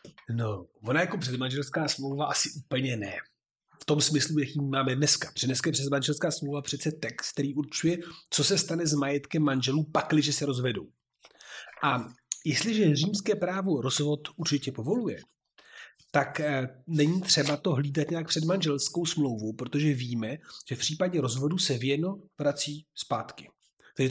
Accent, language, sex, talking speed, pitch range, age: native, Czech, male, 140 wpm, 135-165 Hz, 30-49